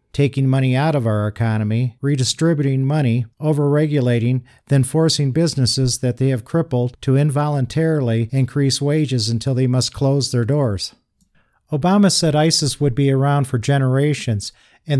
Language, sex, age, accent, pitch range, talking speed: English, male, 50-69, American, 130-160 Hz, 140 wpm